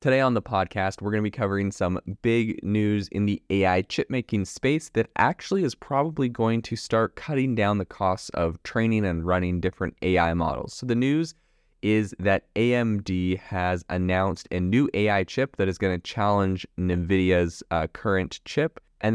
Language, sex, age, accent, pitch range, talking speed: English, male, 20-39, American, 90-110 Hz, 180 wpm